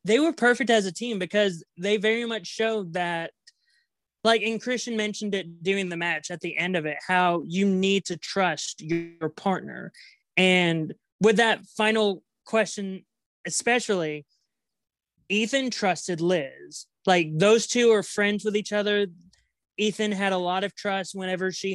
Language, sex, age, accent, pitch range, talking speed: English, male, 20-39, American, 175-215 Hz, 155 wpm